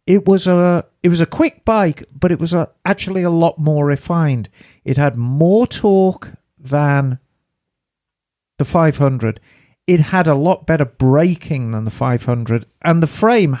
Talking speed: 160 wpm